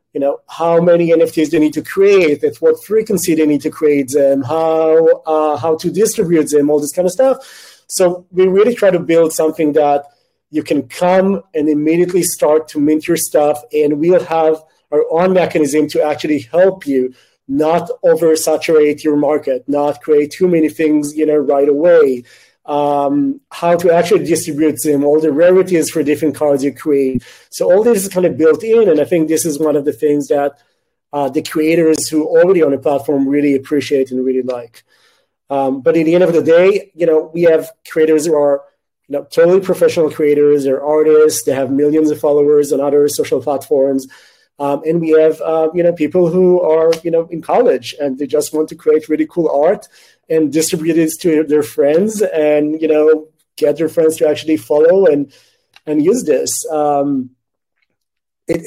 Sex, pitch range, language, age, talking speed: male, 145-170 Hz, English, 30-49, 195 wpm